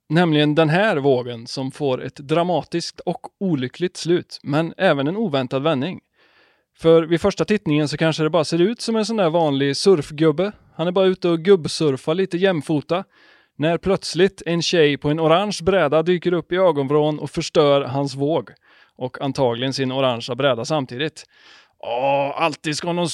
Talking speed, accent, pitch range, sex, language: 170 wpm, native, 145-185 Hz, male, Swedish